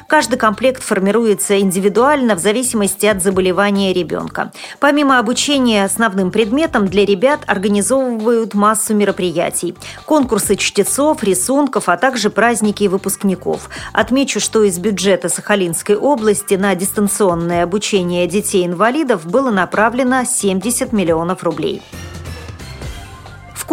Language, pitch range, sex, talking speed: Russian, 190-250 Hz, female, 105 wpm